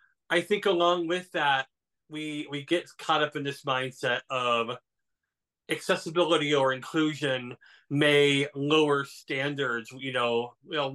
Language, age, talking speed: English, 30-49, 125 wpm